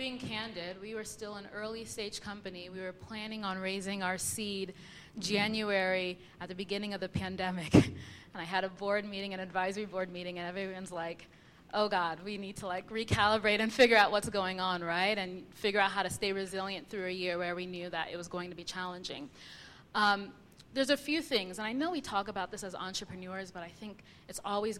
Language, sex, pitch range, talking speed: English, female, 180-210 Hz, 215 wpm